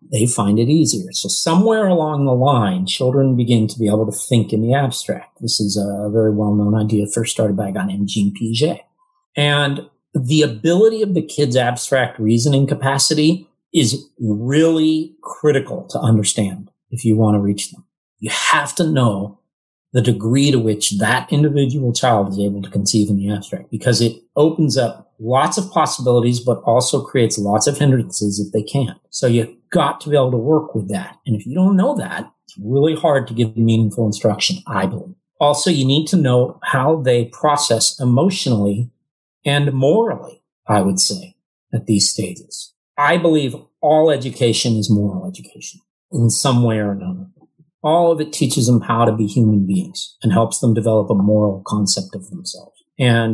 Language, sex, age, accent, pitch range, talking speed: English, male, 40-59, American, 110-150 Hz, 180 wpm